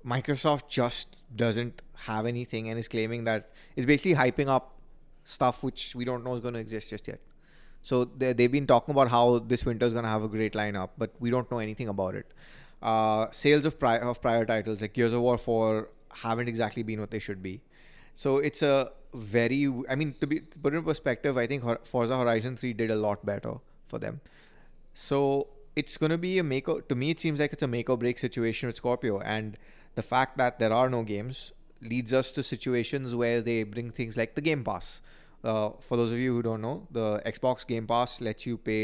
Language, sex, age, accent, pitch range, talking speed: English, male, 20-39, Indian, 110-130 Hz, 220 wpm